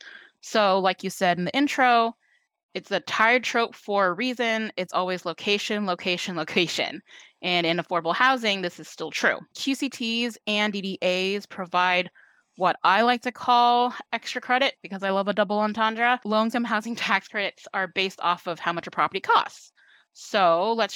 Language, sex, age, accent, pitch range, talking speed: English, female, 20-39, American, 175-225 Hz, 170 wpm